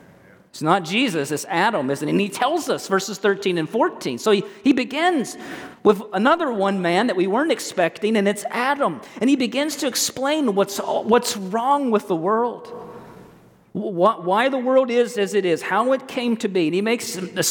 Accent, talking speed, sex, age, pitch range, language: American, 200 wpm, male, 40-59, 180-240 Hz, English